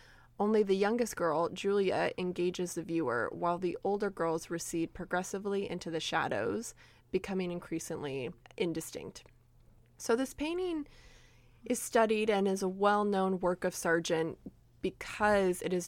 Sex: female